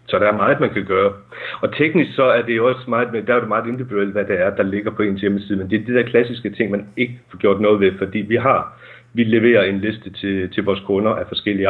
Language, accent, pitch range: Danish, native, 100-120 Hz